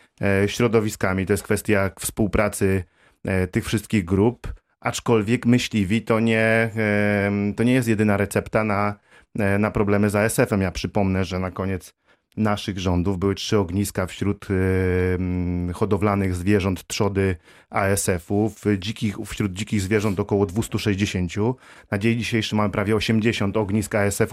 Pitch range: 100-120 Hz